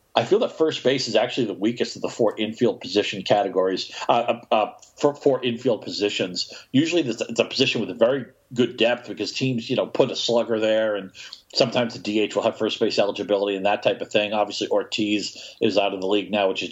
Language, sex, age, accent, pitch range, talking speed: English, male, 50-69, American, 110-130 Hz, 225 wpm